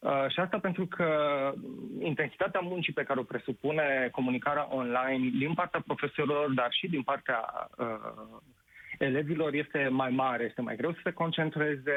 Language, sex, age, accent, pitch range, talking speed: Romanian, male, 30-49, native, 130-160 Hz, 155 wpm